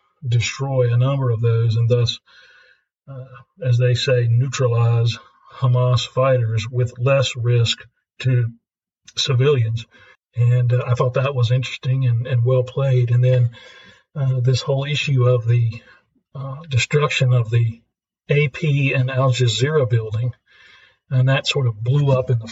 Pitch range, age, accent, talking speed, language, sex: 115-130 Hz, 40-59, American, 145 wpm, English, male